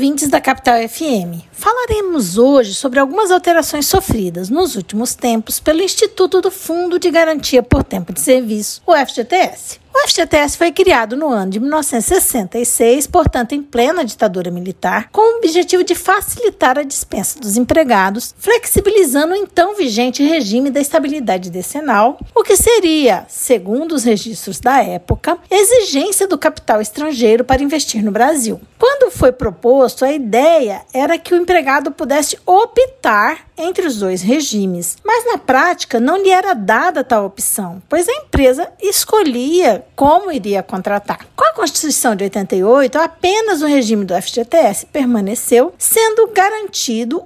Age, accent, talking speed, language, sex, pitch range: 50-69, Brazilian, 145 wpm, Portuguese, female, 235-365 Hz